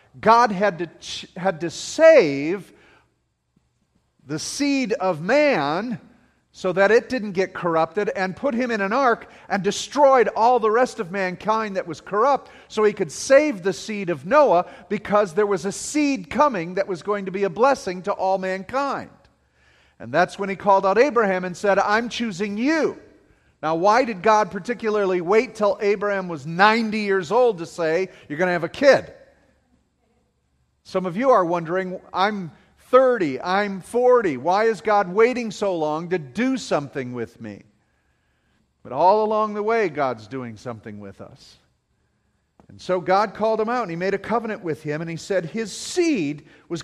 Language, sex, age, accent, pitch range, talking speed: English, male, 40-59, American, 175-225 Hz, 175 wpm